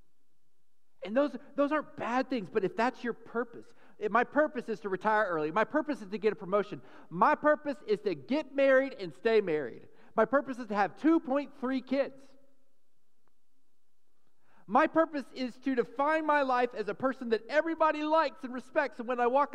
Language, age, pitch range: English, 40-59, 195-275 Hz